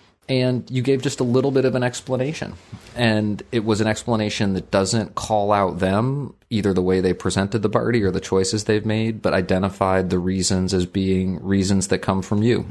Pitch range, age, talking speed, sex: 90-105 Hz, 30-49, 205 wpm, male